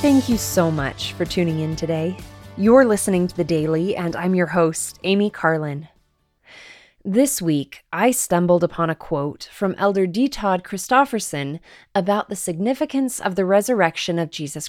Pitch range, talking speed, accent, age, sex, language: 170-220 Hz, 160 wpm, American, 20-39, female, English